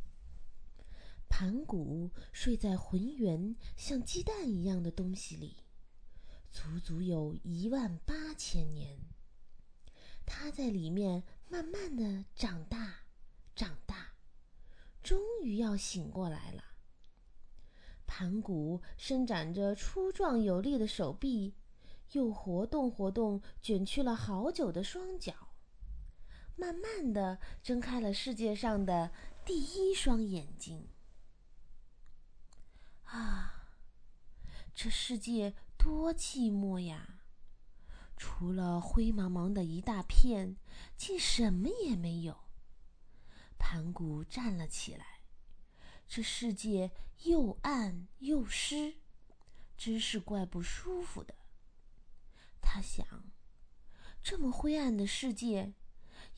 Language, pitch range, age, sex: Chinese, 160-245 Hz, 30-49, female